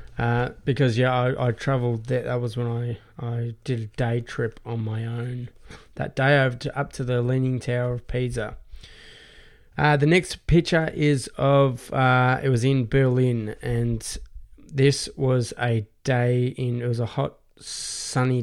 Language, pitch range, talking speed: English, 115-135 Hz, 165 wpm